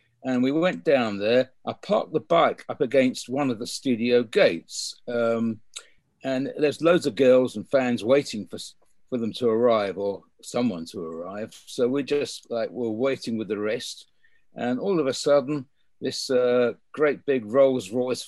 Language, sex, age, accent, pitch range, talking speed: English, male, 50-69, British, 125-170 Hz, 175 wpm